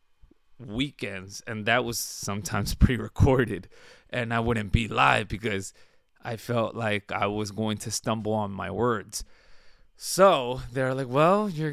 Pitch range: 110-135 Hz